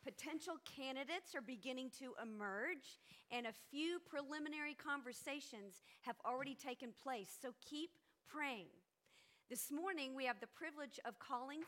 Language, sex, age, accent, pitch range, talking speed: English, female, 50-69, American, 235-295 Hz, 135 wpm